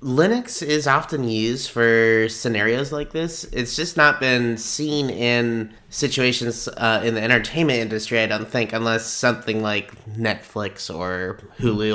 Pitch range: 110-135 Hz